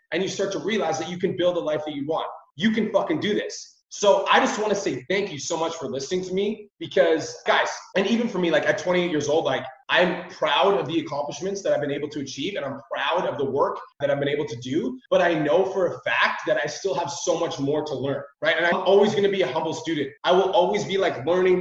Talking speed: 275 wpm